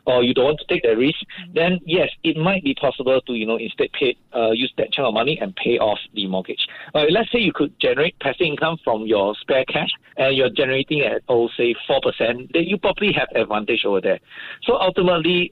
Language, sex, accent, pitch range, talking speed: English, male, Malaysian, 120-180 Hz, 225 wpm